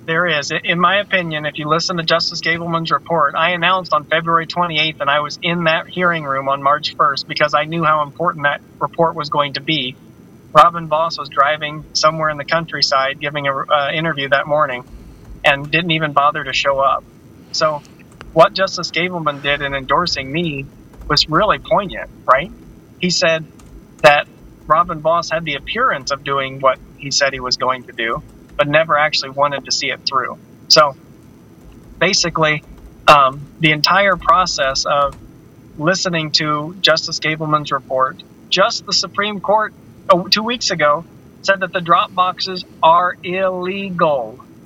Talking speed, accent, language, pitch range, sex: 165 wpm, American, English, 145-175 Hz, male